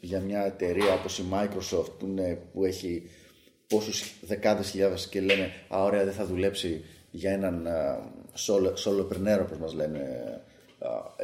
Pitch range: 95-145 Hz